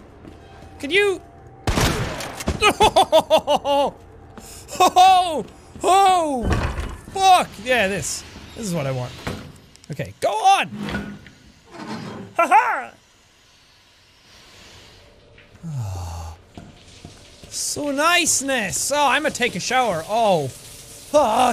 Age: 30-49